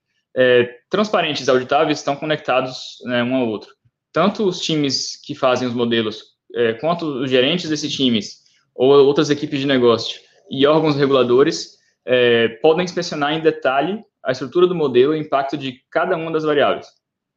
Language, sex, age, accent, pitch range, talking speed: Portuguese, male, 20-39, Brazilian, 130-160 Hz, 160 wpm